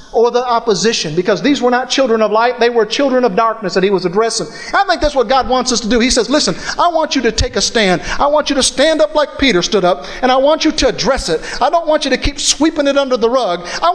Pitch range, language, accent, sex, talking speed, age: 210-300 Hz, English, American, male, 290 wpm, 50-69